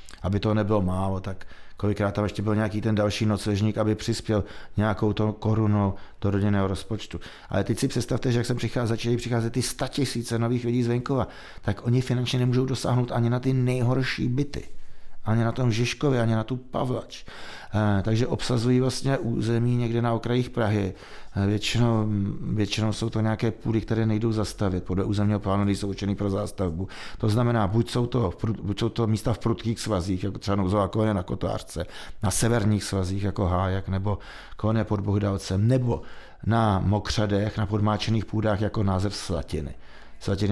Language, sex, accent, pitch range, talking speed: Czech, male, native, 100-120 Hz, 180 wpm